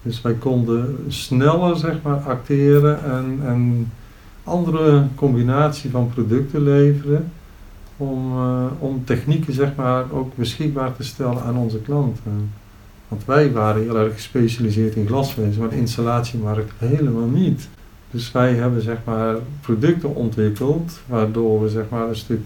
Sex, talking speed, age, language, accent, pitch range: male, 140 wpm, 50-69, Dutch, Dutch, 110-130 Hz